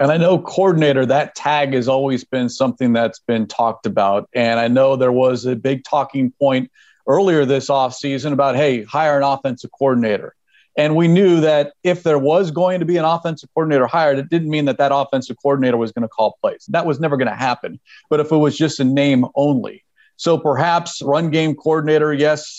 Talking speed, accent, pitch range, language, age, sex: 205 wpm, American, 135-165 Hz, English, 40-59, male